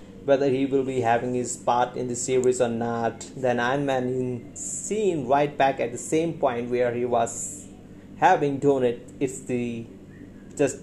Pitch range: 115-140 Hz